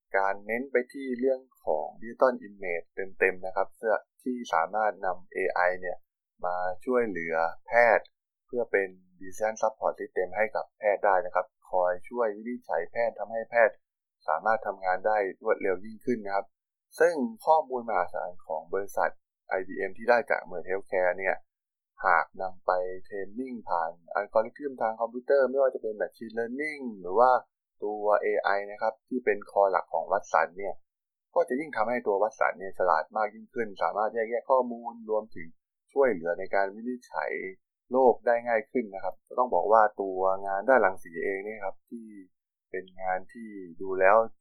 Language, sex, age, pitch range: Thai, male, 20-39, 95-120 Hz